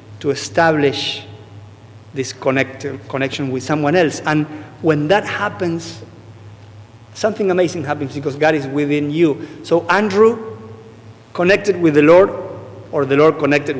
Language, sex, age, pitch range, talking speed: English, male, 50-69, 110-170 Hz, 125 wpm